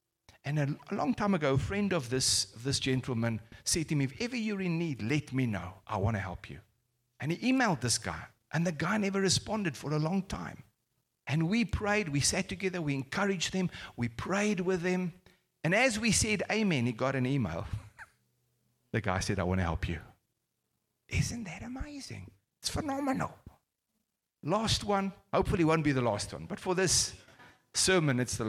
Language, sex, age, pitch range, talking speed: English, male, 50-69, 105-160 Hz, 190 wpm